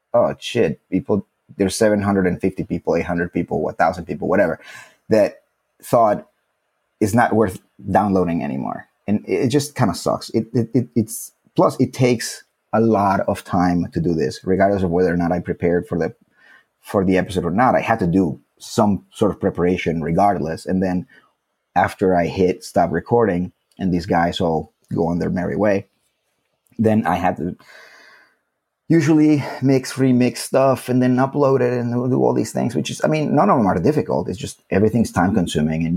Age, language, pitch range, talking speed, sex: 30-49, English, 85-125 Hz, 180 wpm, male